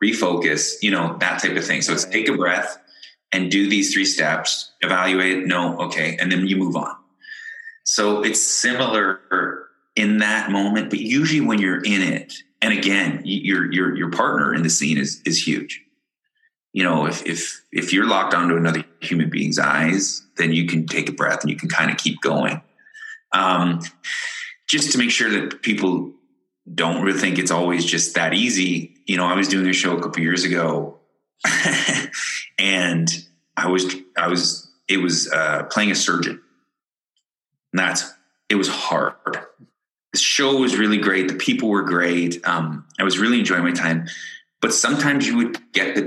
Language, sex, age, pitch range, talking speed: English, male, 30-49, 85-100 Hz, 180 wpm